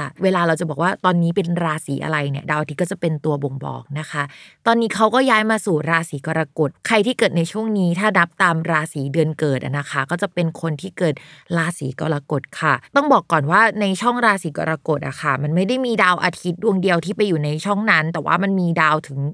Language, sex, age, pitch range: Thai, female, 20-39, 160-205 Hz